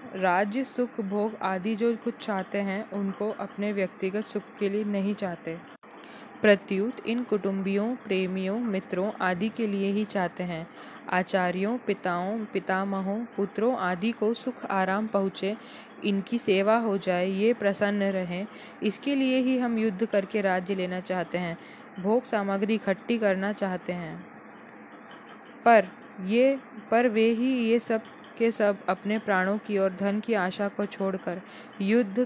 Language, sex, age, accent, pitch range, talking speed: Hindi, female, 10-29, native, 190-225 Hz, 145 wpm